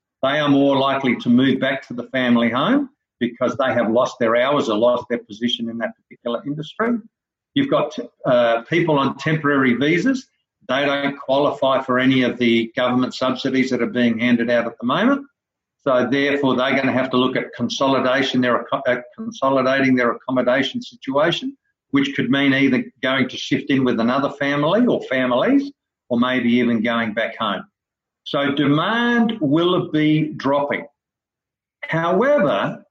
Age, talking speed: 50-69, 165 wpm